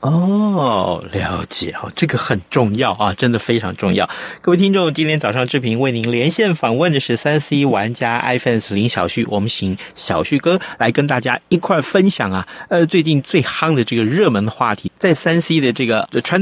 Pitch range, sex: 120-190 Hz, male